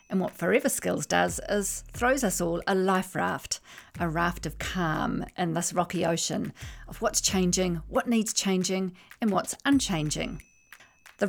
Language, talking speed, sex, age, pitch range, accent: English, 160 wpm, female, 40-59, 165-215 Hz, Australian